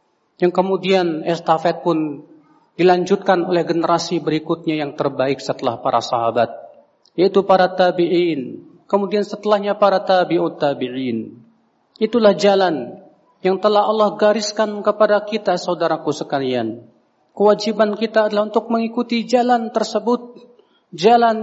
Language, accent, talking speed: Indonesian, native, 110 wpm